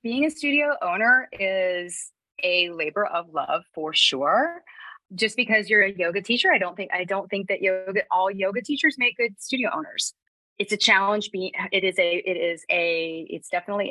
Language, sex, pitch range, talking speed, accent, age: English, female, 160-220 Hz, 185 wpm, American, 30-49